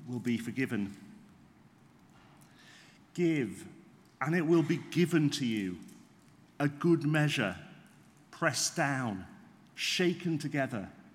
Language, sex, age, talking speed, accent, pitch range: English, male, 40-59, 95 wpm, British, 125-190 Hz